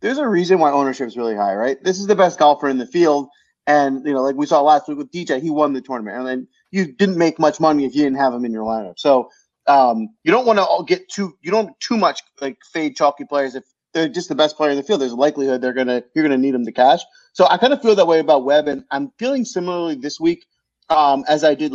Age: 30-49